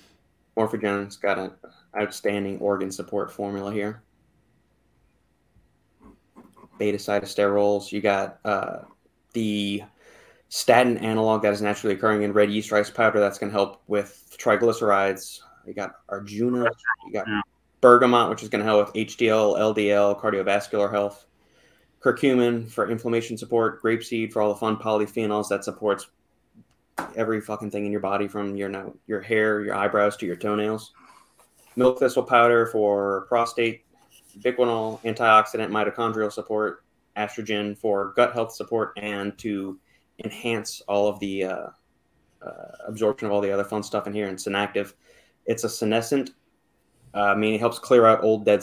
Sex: male